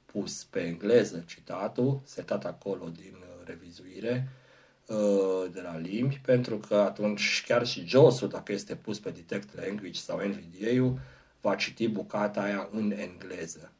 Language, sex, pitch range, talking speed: Romanian, male, 100-125 Hz, 135 wpm